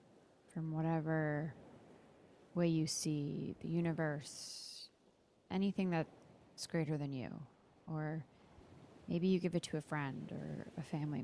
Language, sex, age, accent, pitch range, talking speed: English, female, 30-49, American, 155-175 Hz, 125 wpm